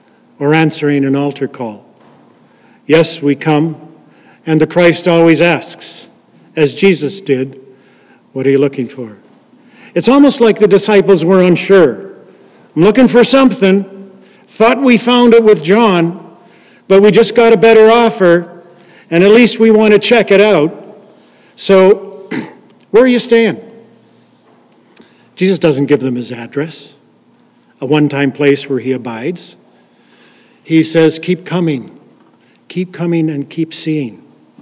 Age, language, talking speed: 50-69, English, 140 wpm